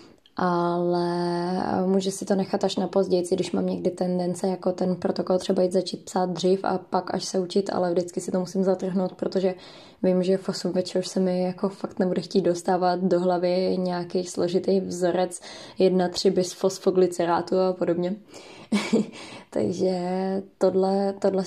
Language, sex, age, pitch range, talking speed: Czech, female, 20-39, 185-205 Hz, 155 wpm